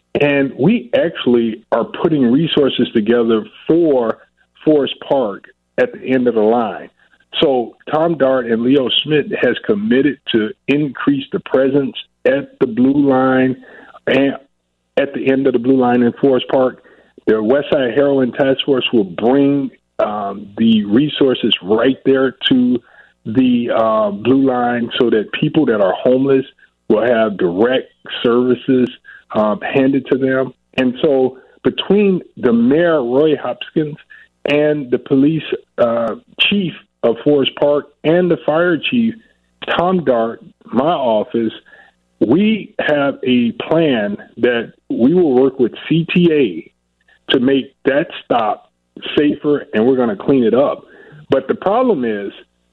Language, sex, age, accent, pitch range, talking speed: English, male, 40-59, American, 120-155 Hz, 140 wpm